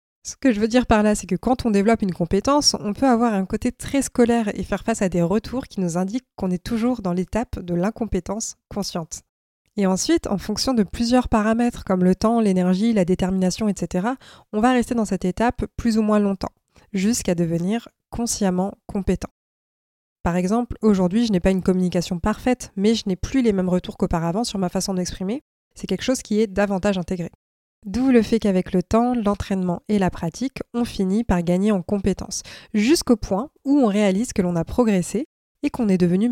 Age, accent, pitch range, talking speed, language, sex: 20-39, French, 185-235 Hz, 205 wpm, French, female